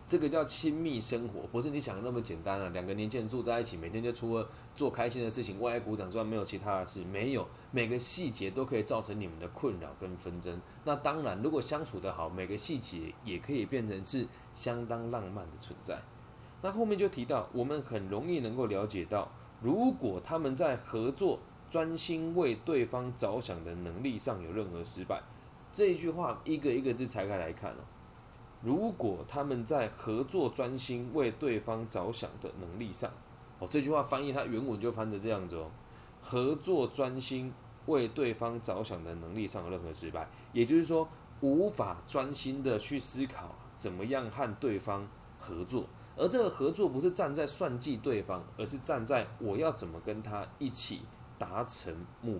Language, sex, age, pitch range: Chinese, male, 20-39, 100-135 Hz